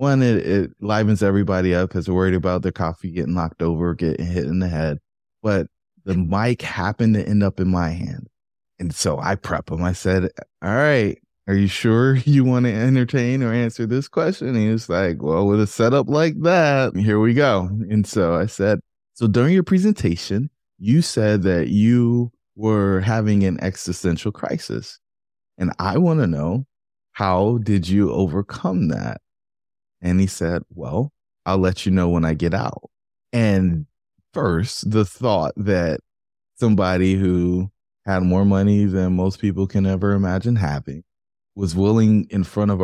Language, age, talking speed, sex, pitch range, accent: English, 20-39, 175 wpm, male, 90-110 Hz, American